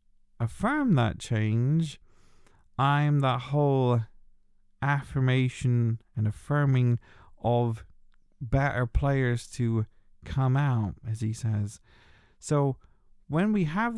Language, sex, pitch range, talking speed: English, male, 110-130 Hz, 95 wpm